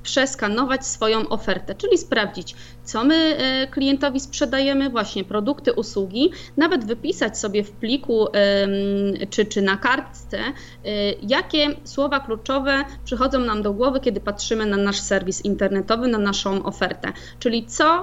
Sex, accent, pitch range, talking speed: female, native, 205-265 Hz, 130 wpm